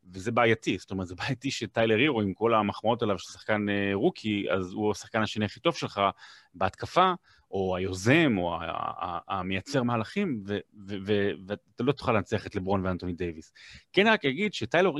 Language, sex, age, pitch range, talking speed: Hebrew, male, 30-49, 100-135 Hz, 170 wpm